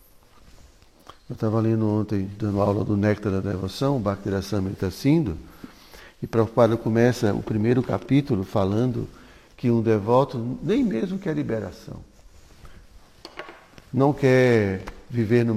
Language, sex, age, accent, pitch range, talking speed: Portuguese, male, 60-79, Brazilian, 105-140 Hz, 120 wpm